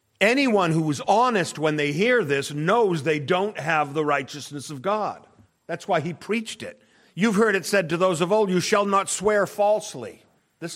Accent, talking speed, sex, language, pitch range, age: American, 195 wpm, male, English, 120-185 Hz, 50-69